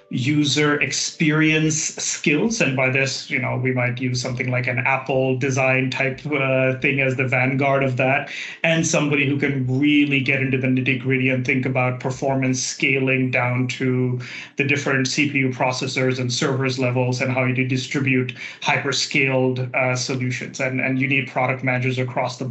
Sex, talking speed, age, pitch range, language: male, 170 wpm, 30-49, 130-145 Hz, English